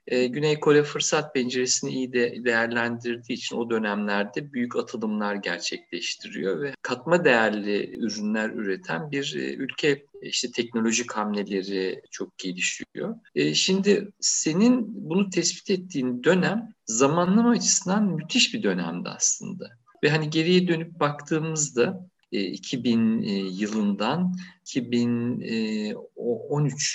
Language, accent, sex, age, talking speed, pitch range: Turkish, native, male, 50-69, 100 wpm, 120-195 Hz